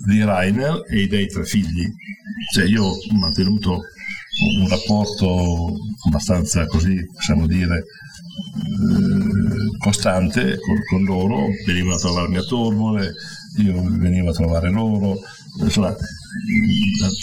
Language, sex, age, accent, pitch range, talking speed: English, male, 60-79, Italian, 90-105 Hz, 110 wpm